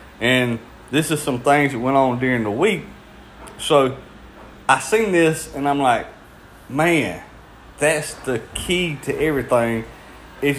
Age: 30-49